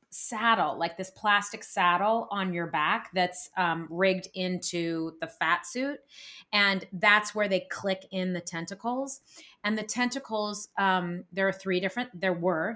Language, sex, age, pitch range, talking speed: English, female, 30-49, 175-210 Hz, 155 wpm